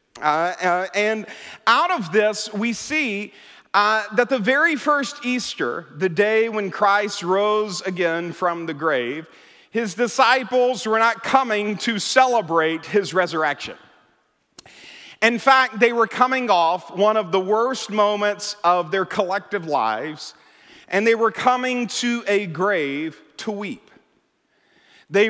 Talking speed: 135 wpm